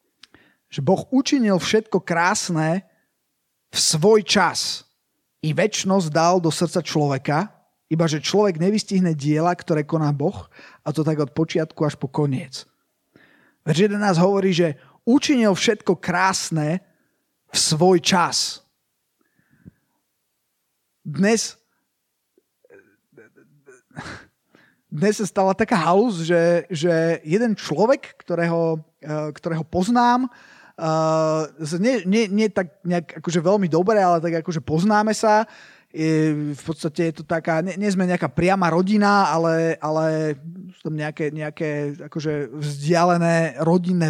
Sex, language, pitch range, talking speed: male, Slovak, 160-195 Hz, 115 wpm